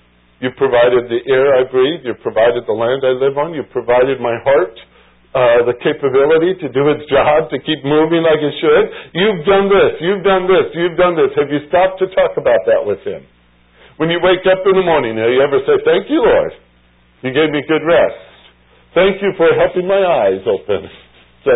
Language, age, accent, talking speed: English, 60-79, American, 210 wpm